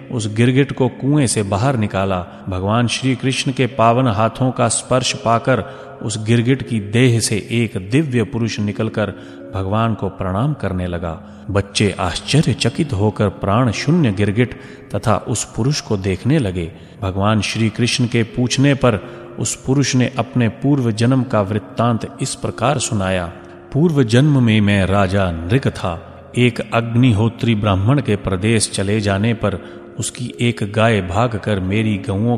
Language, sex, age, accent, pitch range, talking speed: Hindi, male, 30-49, native, 100-125 Hz, 150 wpm